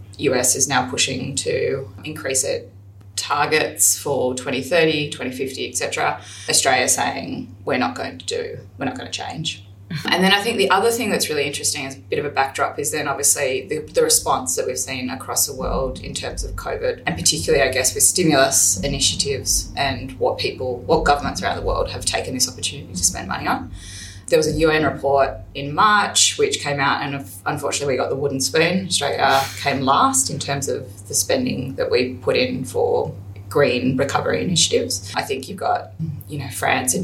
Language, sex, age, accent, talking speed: English, female, 20-39, Australian, 195 wpm